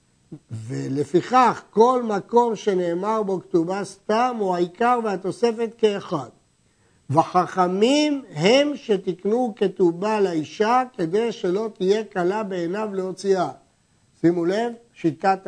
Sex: male